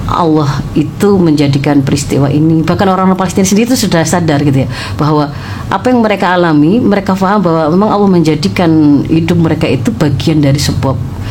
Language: Indonesian